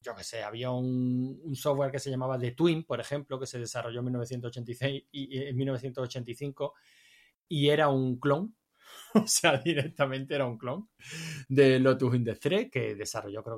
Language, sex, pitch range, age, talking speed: Spanish, male, 125-145 Hz, 20-39, 170 wpm